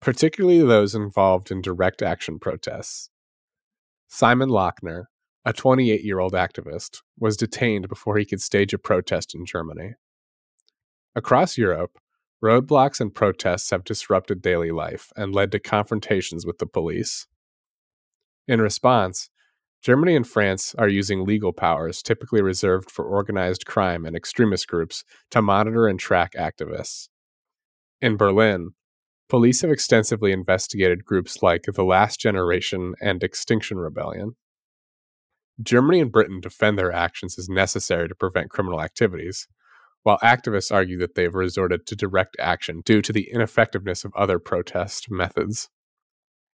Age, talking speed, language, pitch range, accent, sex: 30-49, 135 wpm, English, 90-110 Hz, American, male